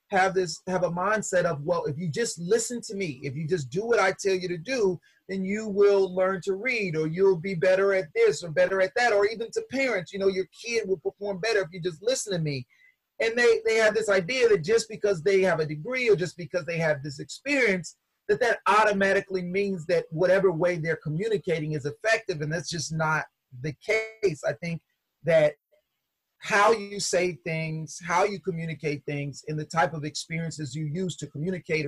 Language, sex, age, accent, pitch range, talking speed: English, male, 30-49, American, 155-205 Hz, 215 wpm